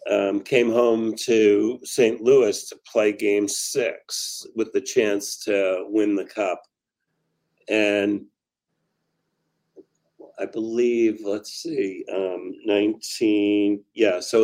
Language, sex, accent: English, male, American